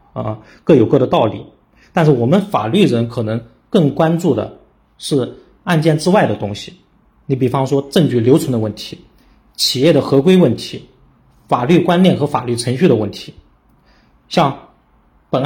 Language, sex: Chinese, male